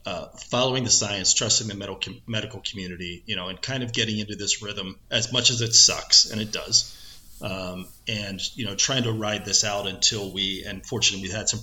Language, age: English, 30-49